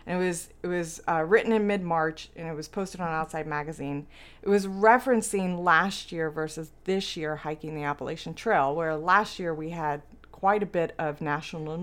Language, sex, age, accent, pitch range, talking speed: English, female, 30-49, American, 160-205 Hz, 195 wpm